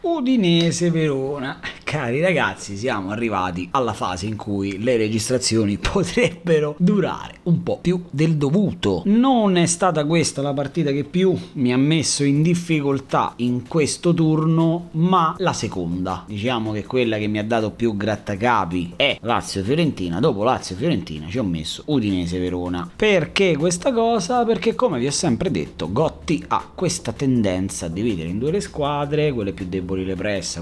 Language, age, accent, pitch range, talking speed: Italian, 30-49, native, 95-155 Hz, 155 wpm